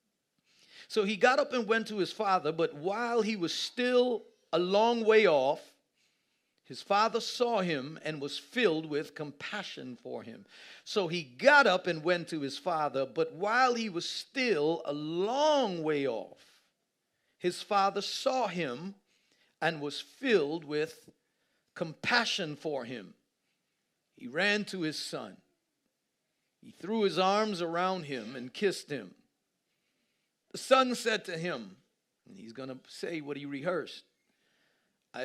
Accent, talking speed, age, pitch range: American, 145 wpm, 50-69, 155-230 Hz